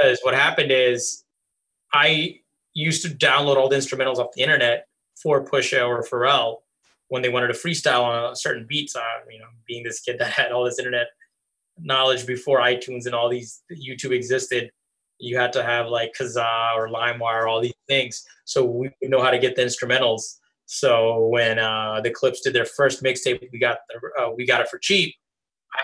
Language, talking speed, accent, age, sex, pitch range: English, 195 wpm, American, 20-39, male, 120-140 Hz